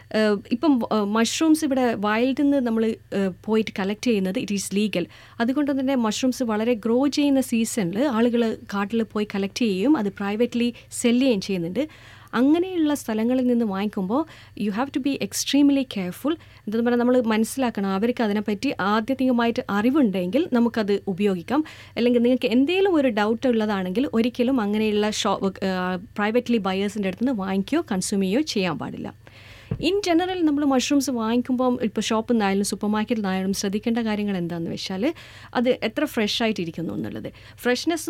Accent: native